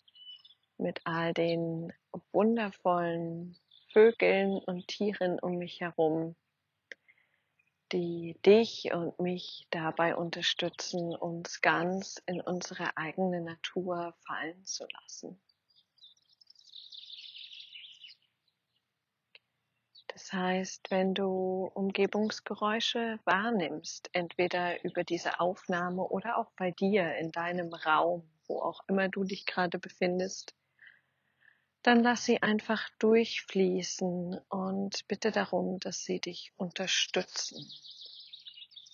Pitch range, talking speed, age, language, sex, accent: 170-200 Hz, 95 wpm, 40-59, German, female, German